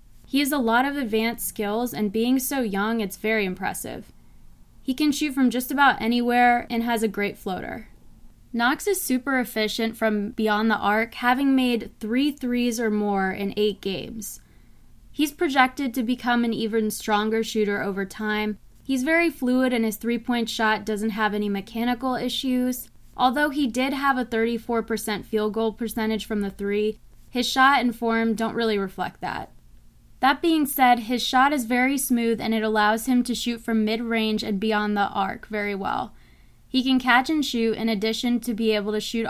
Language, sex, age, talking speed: English, female, 20-39, 180 wpm